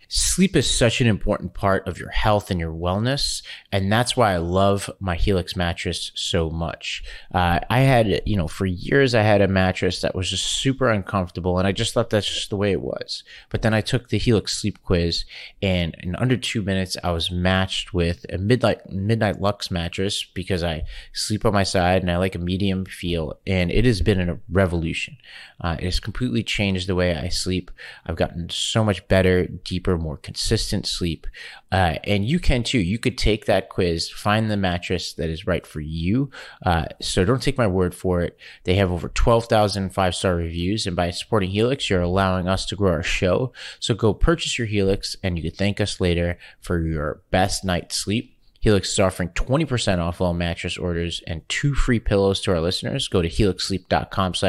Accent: American